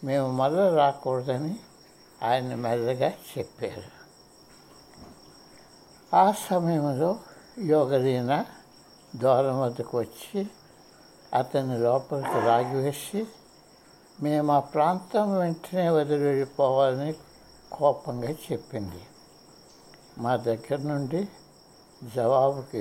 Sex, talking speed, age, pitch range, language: male, 70 wpm, 60-79, 130-175 Hz, Telugu